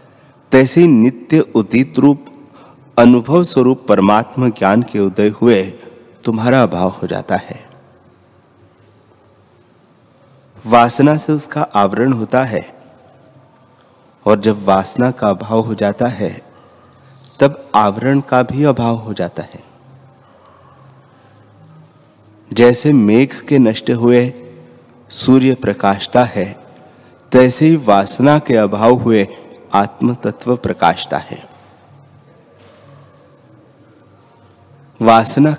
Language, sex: Hindi, male